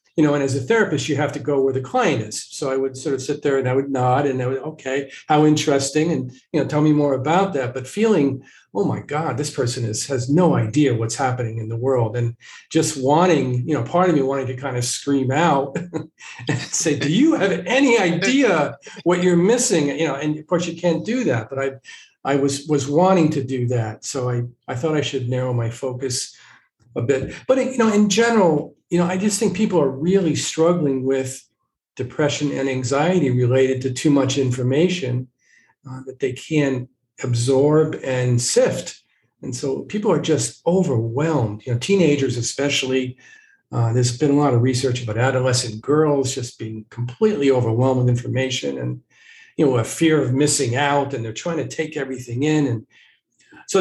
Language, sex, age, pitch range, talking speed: English, male, 50-69, 130-160 Hz, 200 wpm